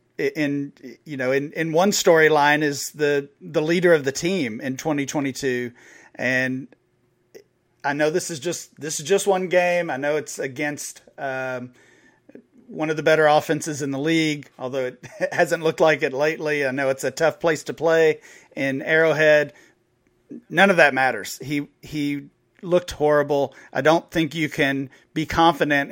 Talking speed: 165 wpm